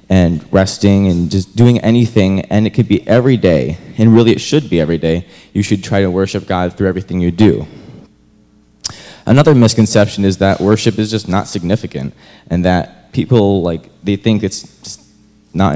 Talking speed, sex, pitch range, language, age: 175 wpm, male, 90-115 Hz, English, 20-39